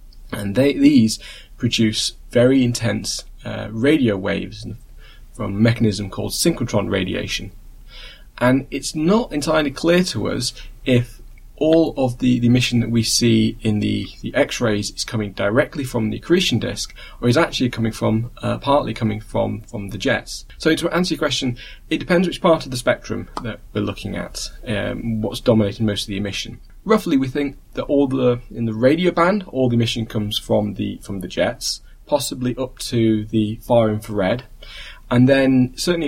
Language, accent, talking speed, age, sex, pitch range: English, British, 175 wpm, 20-39, male, 105-130 Hz